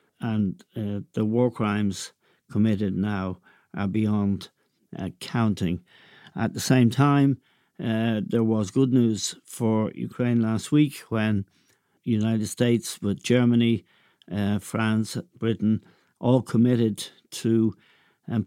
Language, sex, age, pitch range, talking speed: English, male, 60-79, 105-120 Hz, 115 wpm